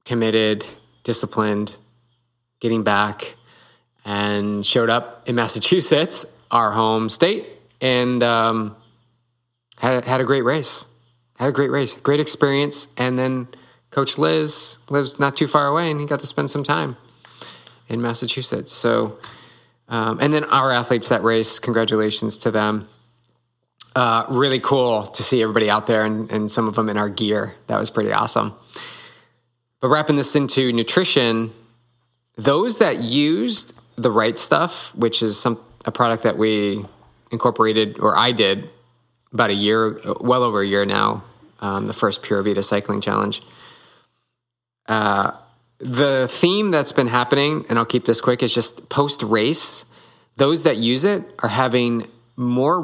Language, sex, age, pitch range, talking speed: English, male, 20-39, 110-130 Hz, 150 wpm